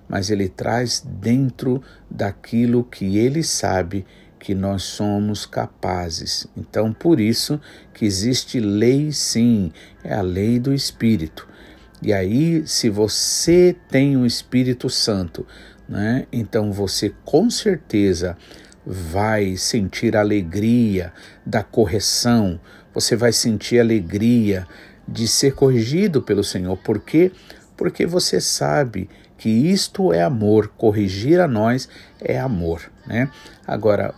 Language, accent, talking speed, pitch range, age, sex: Portuguese, Brazilian, 125 wpm, 100-125 Hz, 50-69, male